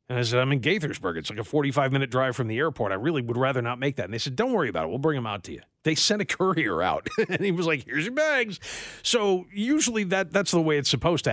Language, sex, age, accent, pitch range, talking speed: English, male, 50-69, American, 125-170 Hz, 290 wpm